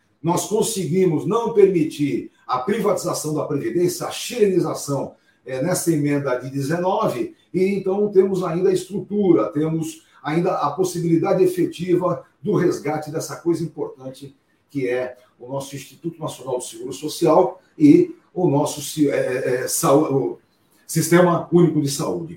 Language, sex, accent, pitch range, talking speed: Portuguese, male, Brazilian, 150-200 Hz, 125 wpm